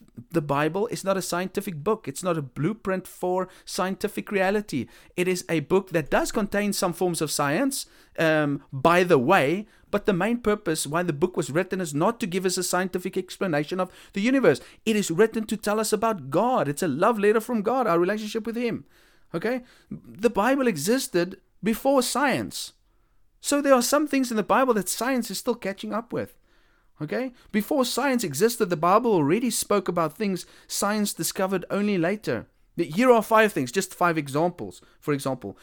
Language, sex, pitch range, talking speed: English, male, 160-215 Hz, 185 wpm